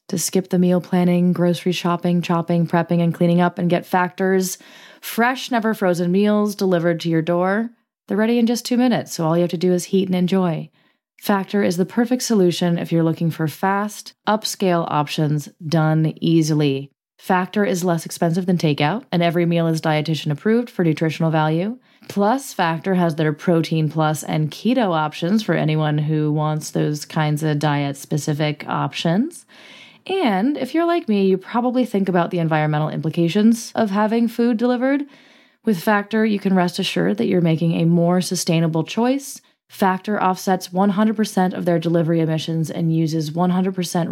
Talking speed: 170 wpm